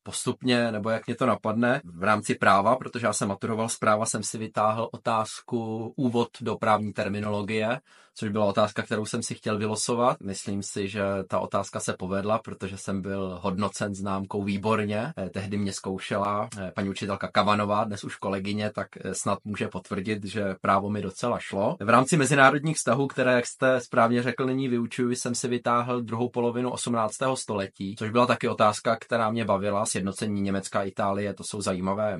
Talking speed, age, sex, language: 175 wpm, 20-39, male, Czech